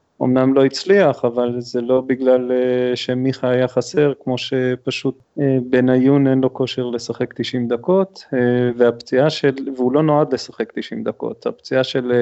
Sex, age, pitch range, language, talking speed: male, 30-49, 120-135 Hz, Hebrew, 140 wpm